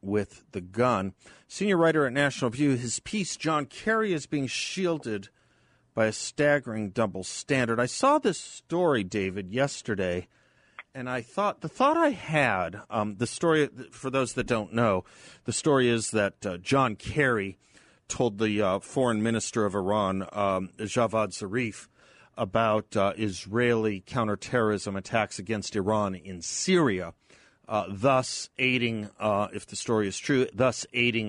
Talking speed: 150 wpm